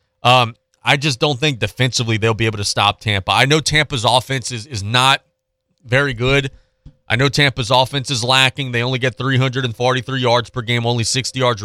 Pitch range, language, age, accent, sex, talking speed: 105-130 Hz, English, 30-49, American, male, 190 wpm